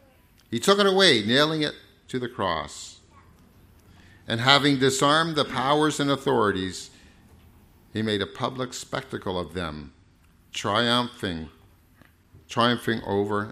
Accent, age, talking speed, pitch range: American, 50-69, 115 wpm, 90-125 Hz